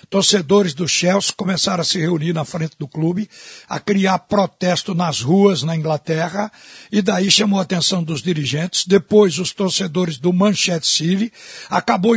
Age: 60-79